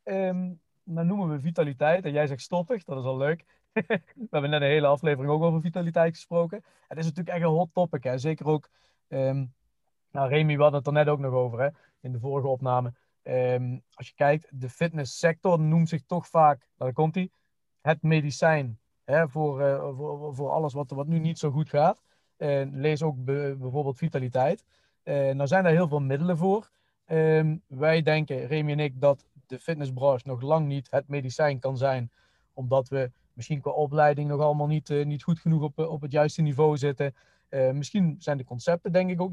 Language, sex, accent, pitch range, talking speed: Dutch, male, Dutch, 140-170 Hz, 200 wpm